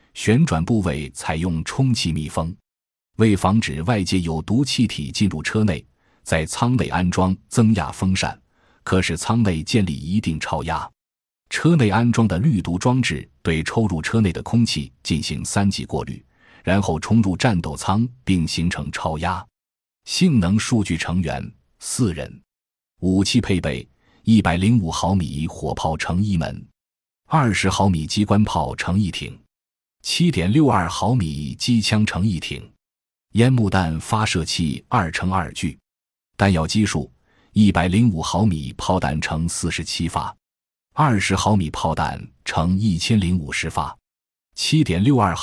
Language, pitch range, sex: Chinese, 80-110 Hz, male